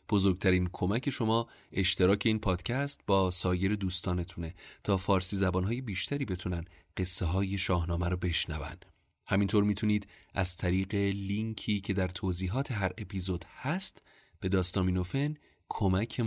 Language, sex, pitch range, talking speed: Persian, male, 90-105 Hz, 120 wpm